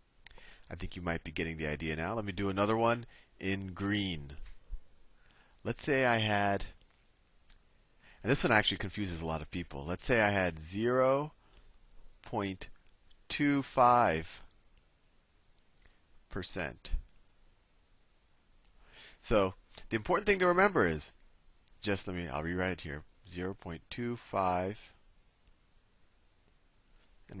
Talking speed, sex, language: 110 wpm, male, English